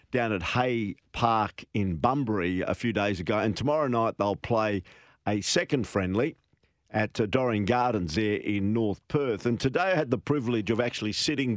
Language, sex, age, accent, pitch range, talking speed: English, male, 50-69, Australian, 100-120 Hz, 175 wpm